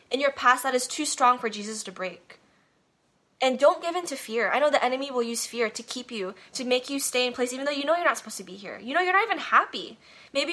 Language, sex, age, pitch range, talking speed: English, female, 10-29, 225-275 Hz, 285 wpm